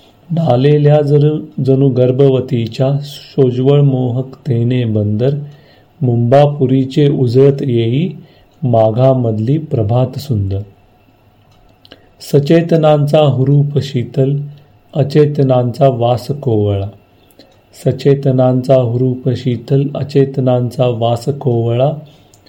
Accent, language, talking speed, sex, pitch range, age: native, Marathi, 70 wpm, male, 115-140 Hz, 40-59